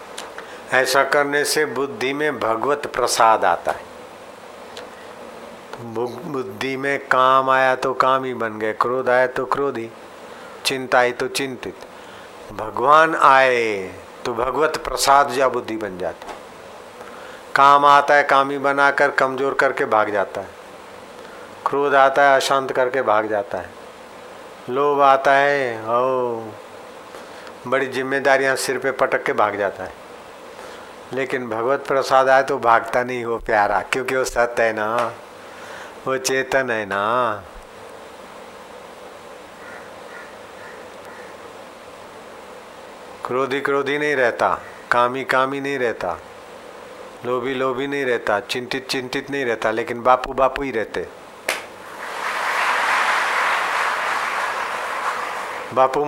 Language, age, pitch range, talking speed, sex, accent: Hindi, 50-69, 125-150 Hz, 115 wpm, male, native